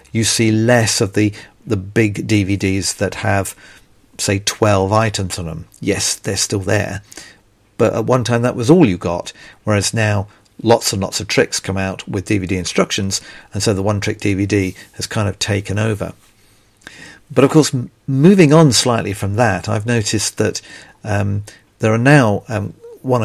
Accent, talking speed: British, 175 wpm